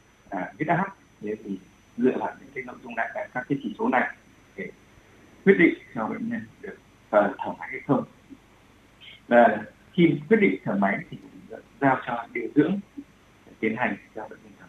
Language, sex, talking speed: Vietnamese, male, 190 wpm